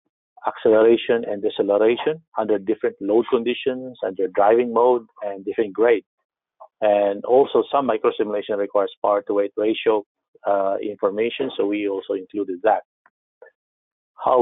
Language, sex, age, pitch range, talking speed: English, male, 50-69, 105-130 Hz, 115 wpm